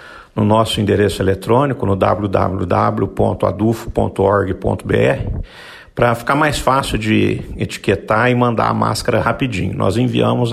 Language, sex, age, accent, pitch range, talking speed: Portuguese, male, 50-69, Brazilian, 110-130 Hz, 110 wpm